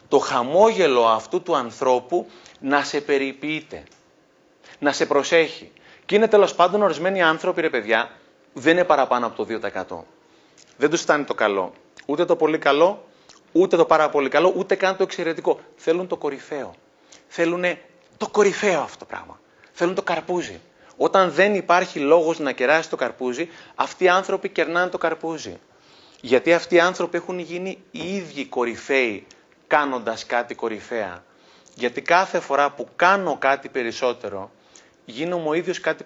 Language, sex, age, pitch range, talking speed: Greek, male, 30-49, 145-180 Hz, 150 wpm